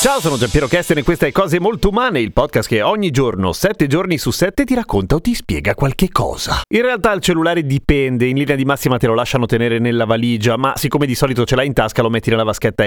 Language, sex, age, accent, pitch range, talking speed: Italian, male, 30-49, native, 120-165 Hz, 245 wpm